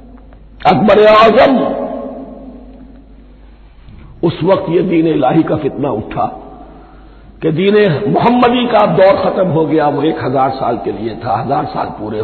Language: Hindi